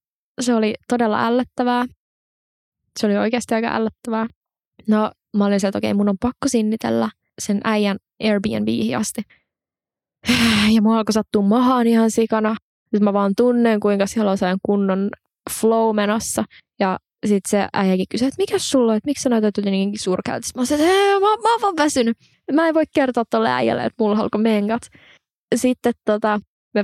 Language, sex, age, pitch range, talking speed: Finnish, female, 20-39, 210-255 Hz, 165 wpm